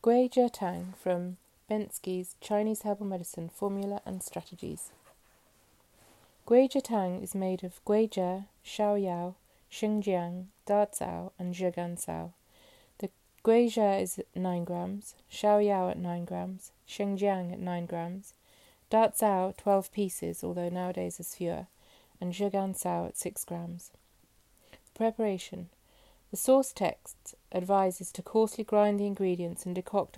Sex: female